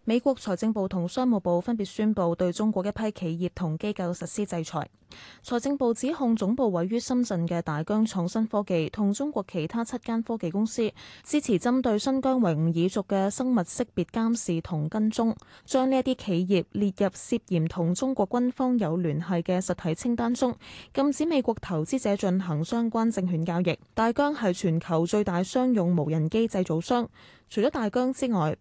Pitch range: 175-235 Hz